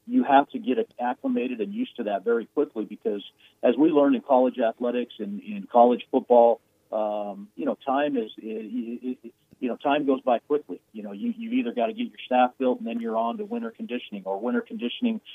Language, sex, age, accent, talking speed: English, male, 40-59, American, 205 wpm